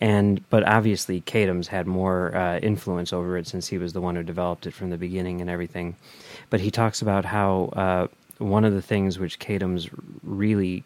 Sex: male